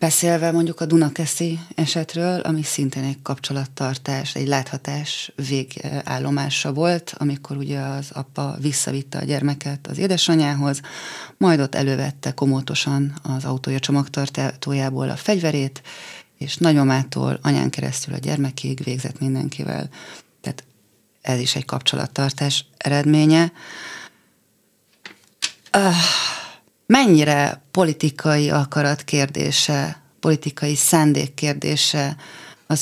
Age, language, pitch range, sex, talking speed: 30-49, Hungarian, 140-155 Hz, female, 100 wpm